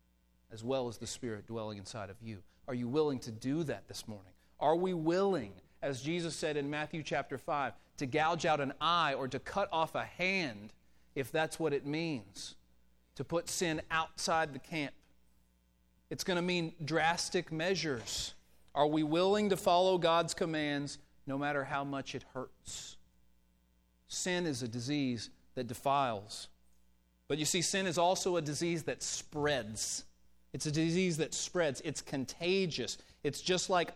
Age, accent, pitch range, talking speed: 40-59, American, 110-170 Hz, 165 wpm